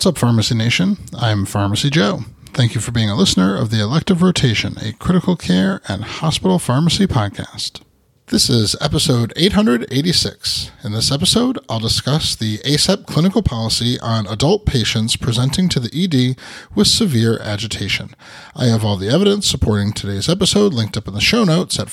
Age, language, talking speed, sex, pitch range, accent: 30-49, English, 170 wpm, male, 110-155 Hz, American